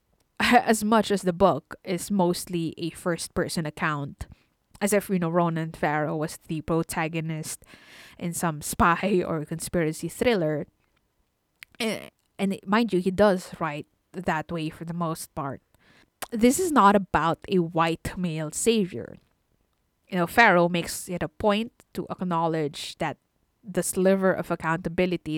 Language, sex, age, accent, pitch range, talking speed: English, female, 20-39, Filipino, 160-195 Hz, 140 wpm